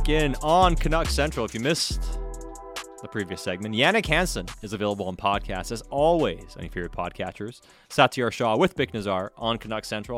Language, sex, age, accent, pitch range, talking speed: English, male, 30-49, American, 100-140 Hz, 170 wpm